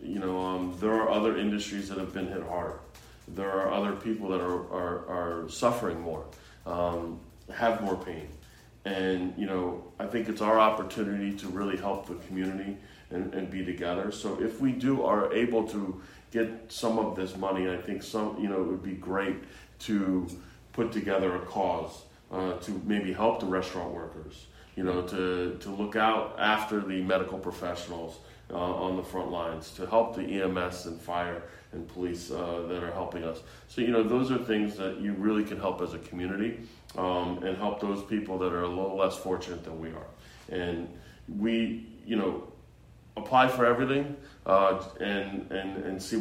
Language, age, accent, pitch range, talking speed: English, 30-49, American, 90-110 Hz, 185 wpm